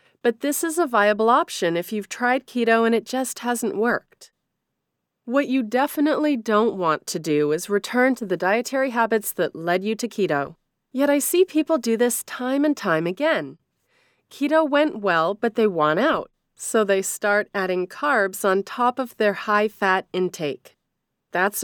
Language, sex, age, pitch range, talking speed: English, female, 30-49, 180-255 Hz, 170 wpm